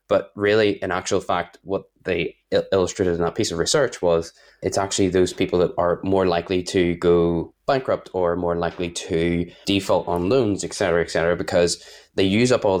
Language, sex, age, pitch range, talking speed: English, male, 20-39, 85-95 Hz, 190 wpm